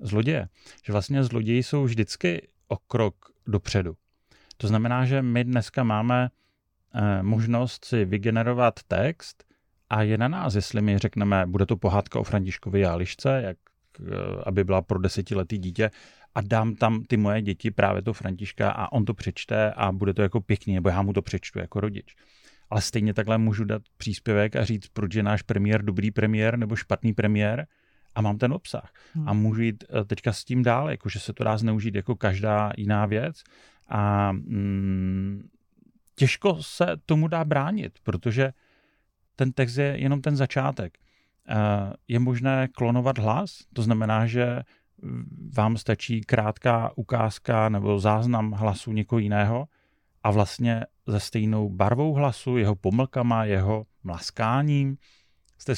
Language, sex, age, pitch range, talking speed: Czech, male, 30-49, 105-120 Hz, 150 wpm